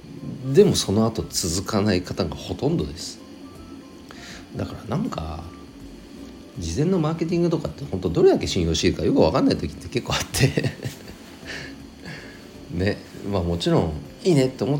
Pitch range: 80-115 Hz